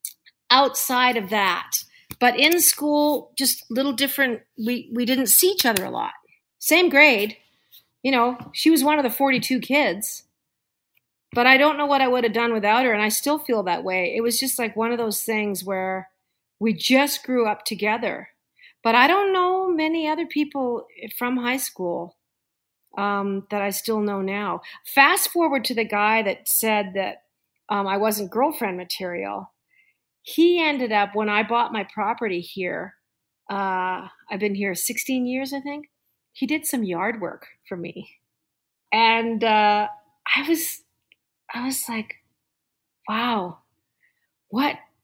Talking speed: 160 wpm